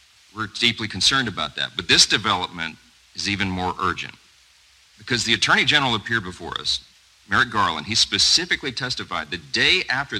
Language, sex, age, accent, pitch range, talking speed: English, male, 50-69, American, 90-120 Hz, 160 wpm